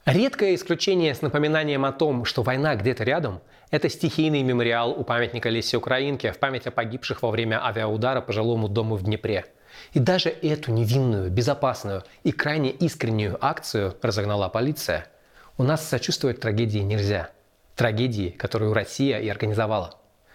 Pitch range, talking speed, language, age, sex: 115-150 Hz, 145 wpm, Russian, 20-39, male